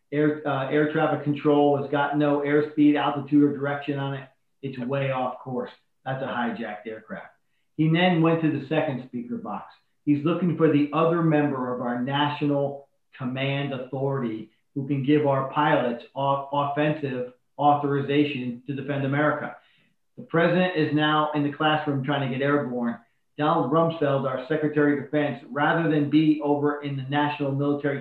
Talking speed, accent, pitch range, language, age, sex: 165 wpm, American, 135-150 Hz, English, 40-59, male